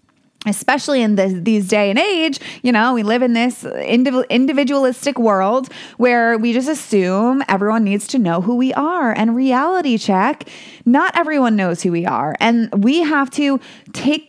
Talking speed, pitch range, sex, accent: 165 wpm, 200-265 Hz, female, American